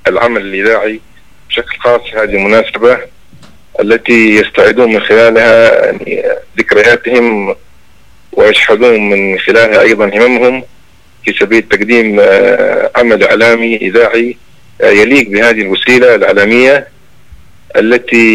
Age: 40-59